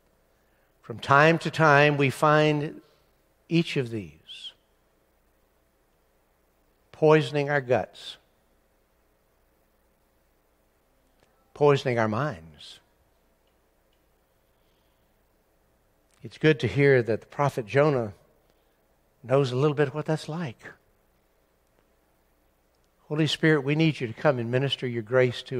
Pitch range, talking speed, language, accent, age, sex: 105-150 Hz, 100 wpm, English, American, 60-79, male